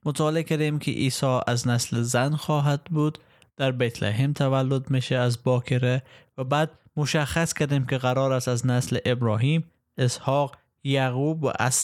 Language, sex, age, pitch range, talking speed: Persian, male, 20-39, 125-155 Hz, 145 wpm